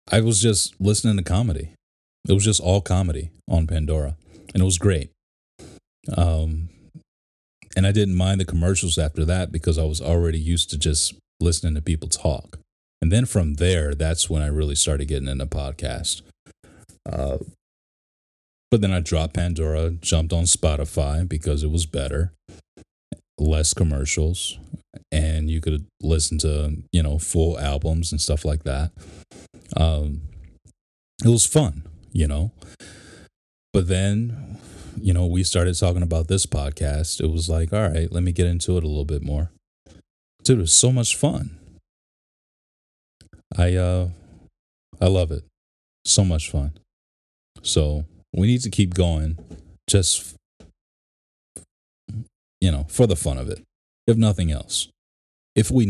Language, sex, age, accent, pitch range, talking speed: English, male, 30-49, American, 75-95 Hz, 150 wpm